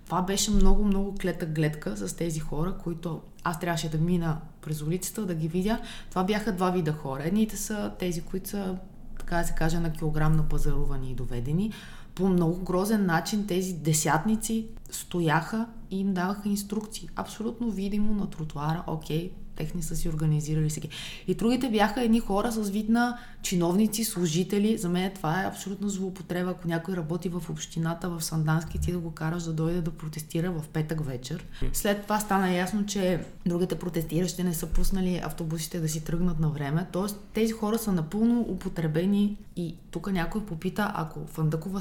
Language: Bulgarian